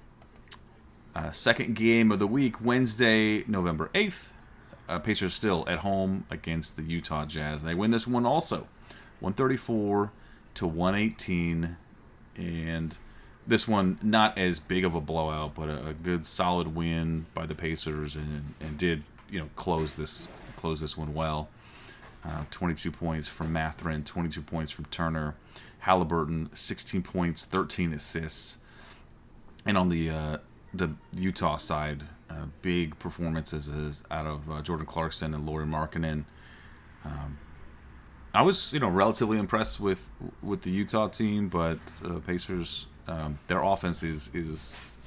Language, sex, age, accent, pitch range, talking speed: English, male, 30-49, American, 75-95 Hz, 145 wpm